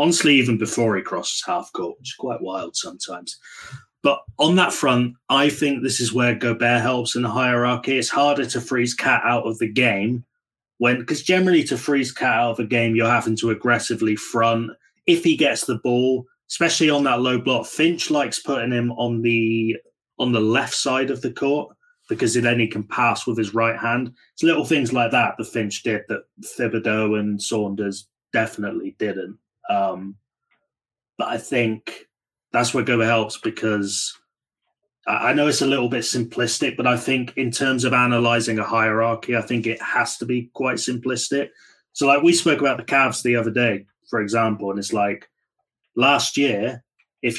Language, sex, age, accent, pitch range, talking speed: English, male, 20-39, British, 115-135 Hz, 185 wpm